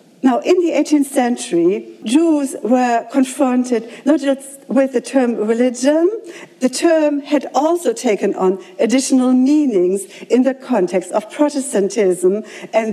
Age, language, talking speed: 60-79, English, 130 wpm